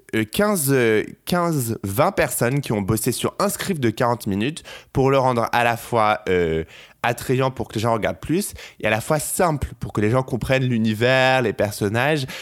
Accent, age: French, 20-39